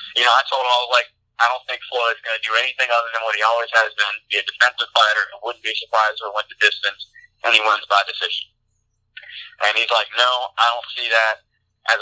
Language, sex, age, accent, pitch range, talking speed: English, male, 20-39, American, 110-135 Hz, 240 wpm